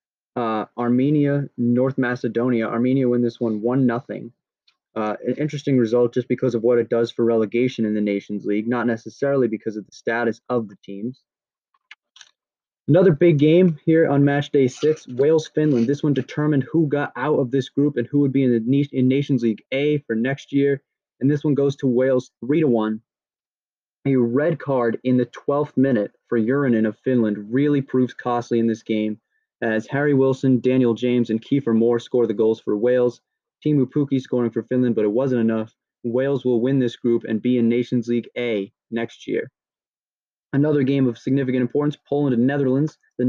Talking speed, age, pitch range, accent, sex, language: 190 wpm, 20-39, 120-140 Hz, American, male, English